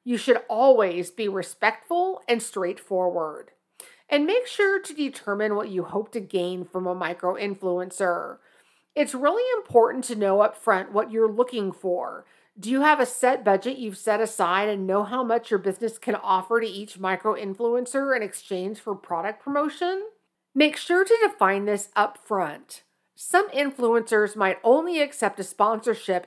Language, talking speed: English, 155 wpm